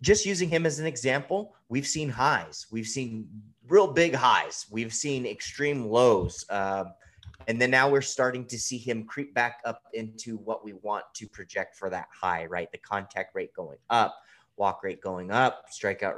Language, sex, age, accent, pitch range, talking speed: English, male, 30-49, American, 105-145 Hz, 185 wpm